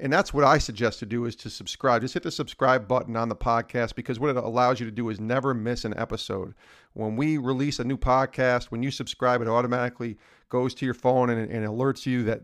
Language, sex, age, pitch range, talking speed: English, male, 40-59, 115-140 Hz, 240 wpm